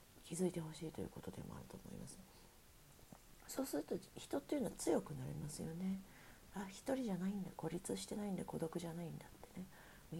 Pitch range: 160-210 Hz